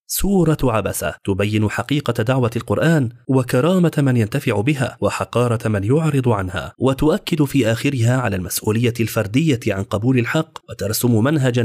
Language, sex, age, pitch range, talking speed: Arabic, male, 30-49, 110-140 Hz, 130 wpm